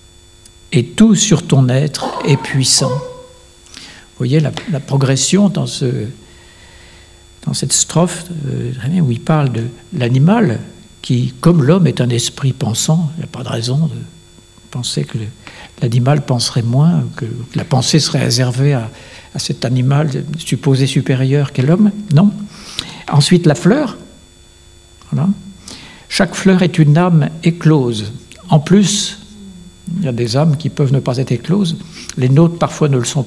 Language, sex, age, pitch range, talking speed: French, male, 60-79, 125-175 Hz, 155 wpm